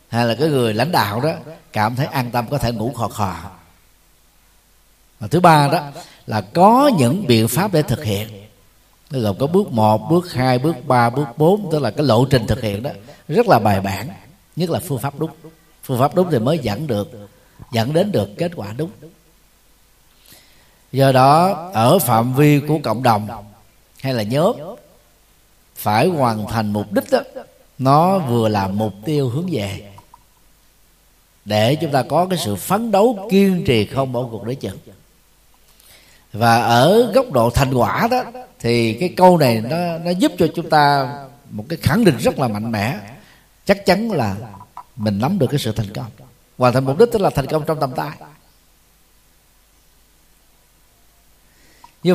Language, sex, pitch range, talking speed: Vietnamese, male, 110-160 Hz, 180 wpm